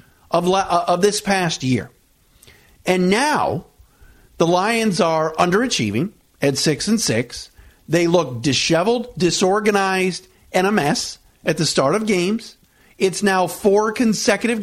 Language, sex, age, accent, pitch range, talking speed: English, male, 50-69, American, 165-220 Hz, 130 wpm